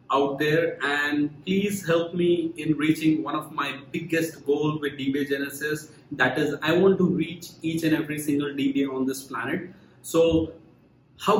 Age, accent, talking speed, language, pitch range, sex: 30-49, Indian, 170 wpm, English, 145-180 Hz, male